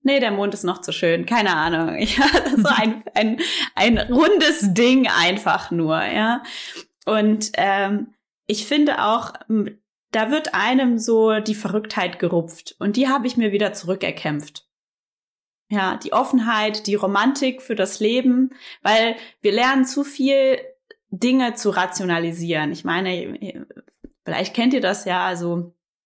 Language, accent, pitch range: German, German, 190-250 Hz